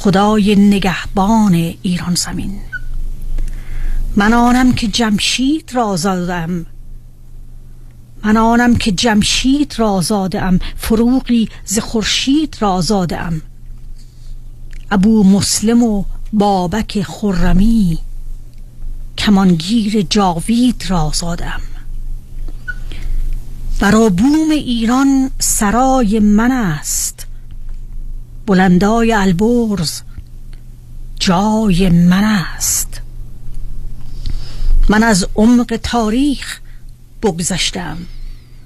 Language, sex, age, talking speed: Persian, female, 40-59, 65 wpm